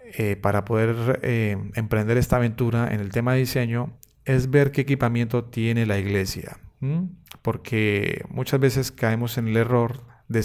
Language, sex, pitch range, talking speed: Spanish, male, 110-130 Hz, 160 wpm